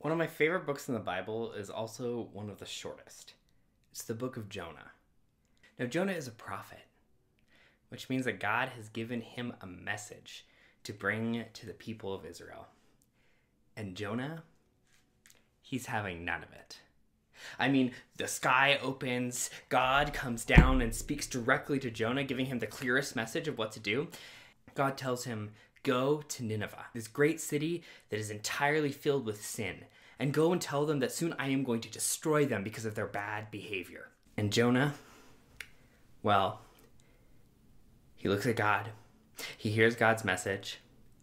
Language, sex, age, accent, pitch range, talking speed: English, male, 20-39, American, 110-140 Hz, 165 wpm